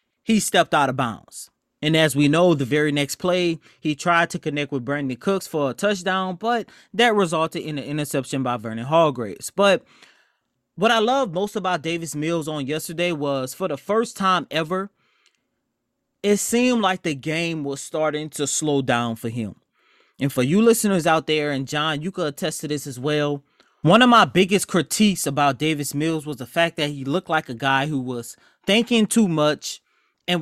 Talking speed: 195 wpm